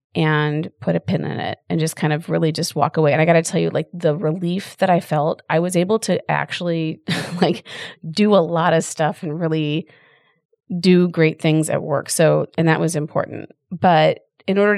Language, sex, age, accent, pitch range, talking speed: English, female, 30-49, American, 155-185 Hz, 205 wpm